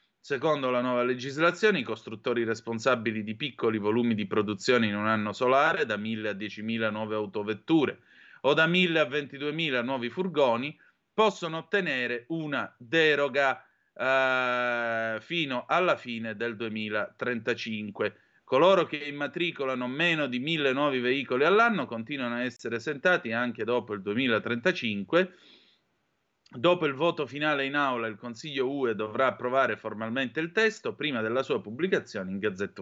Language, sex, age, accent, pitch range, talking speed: Italian, male, 30-49, native, 115-160 Hz, 140 wpm